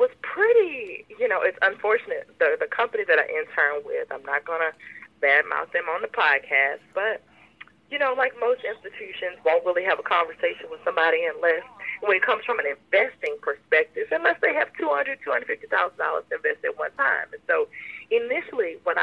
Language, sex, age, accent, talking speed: English, female, 30-49, American, 195 wpm